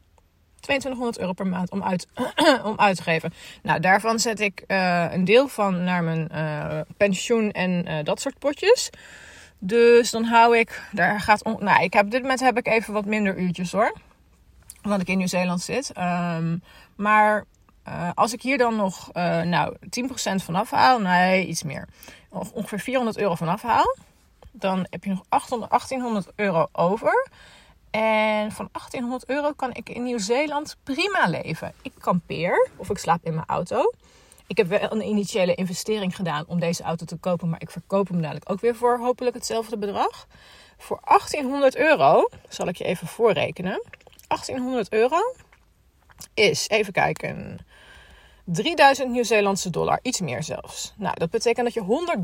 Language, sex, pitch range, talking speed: Dutch, female, 180-245 Hz, 170 wpm